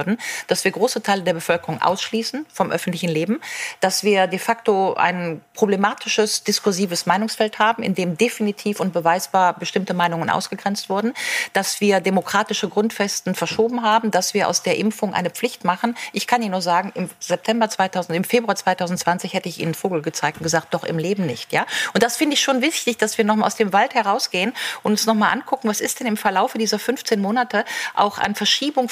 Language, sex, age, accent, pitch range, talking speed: German, female, 40-59, German, 185-225 Hz, 195 wpm